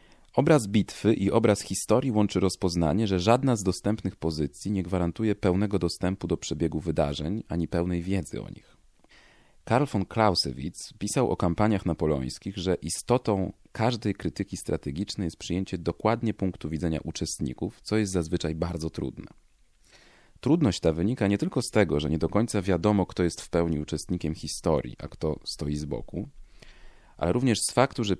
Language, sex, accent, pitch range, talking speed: Polish, male, native, 80-105 Hz, 160 wpm